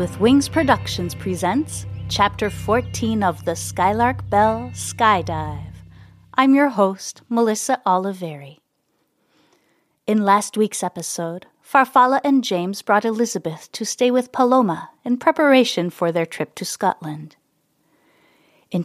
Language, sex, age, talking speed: English, female, 30-49, 120 wpm